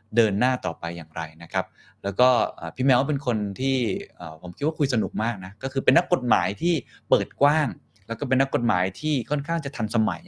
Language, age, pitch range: Thai, 20-39, 100-130 Hz